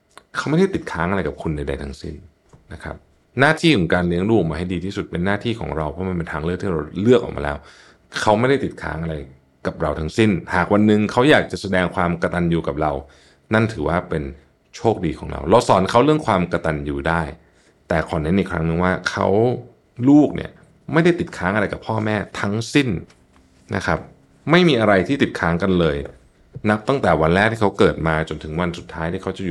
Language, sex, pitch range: Thai, male, 80-105 Hz